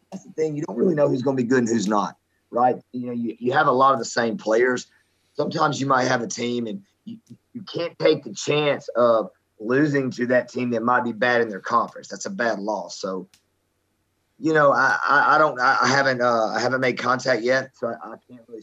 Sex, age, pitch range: male, 30-49, 110-135 Hz